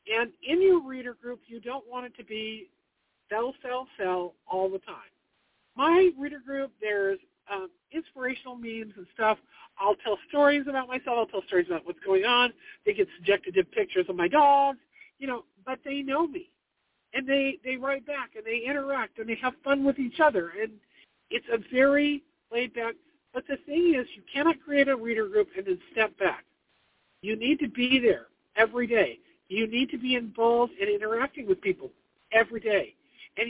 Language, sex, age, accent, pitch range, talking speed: English, male, 50-69, American, 205-285 Hz, 190 wpm